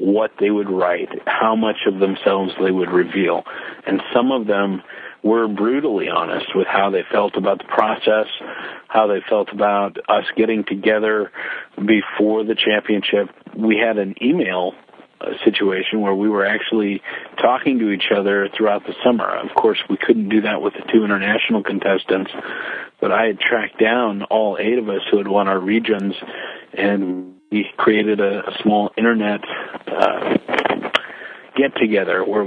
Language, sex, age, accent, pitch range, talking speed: English, male, 50-69, American, 100-110 Hz, 160 wpm